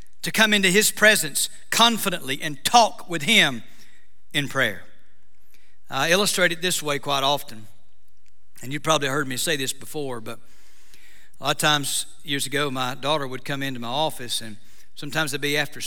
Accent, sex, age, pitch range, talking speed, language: American, male, 60-79, 120-165 Hz, 175 wpm, English